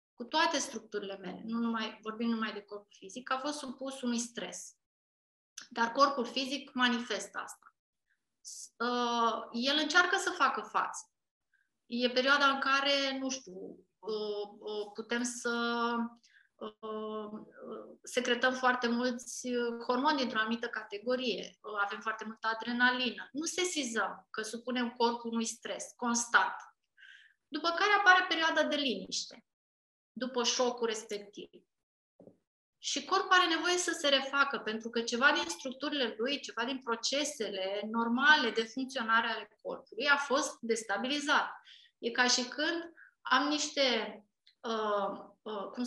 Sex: female